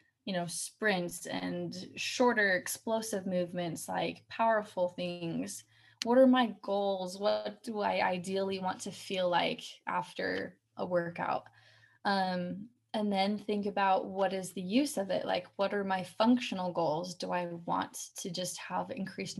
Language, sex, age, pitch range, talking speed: English, female, 20-39, 180-230 Hz, 150 wpm